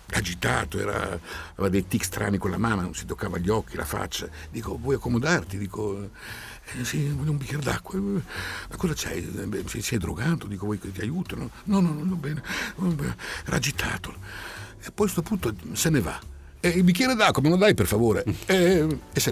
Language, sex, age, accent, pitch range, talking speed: Italian, male, 60-79, native, 95-150 Hz, 200 wpm